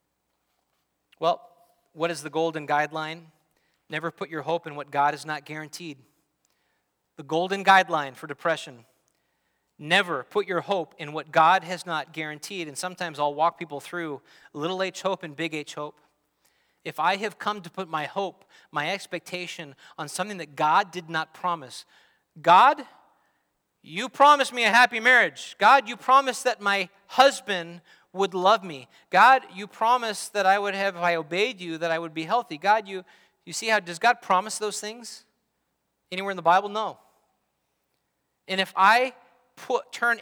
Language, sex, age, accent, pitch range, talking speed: English, male, 30-49, American, 160-215 Hz, 170 wpm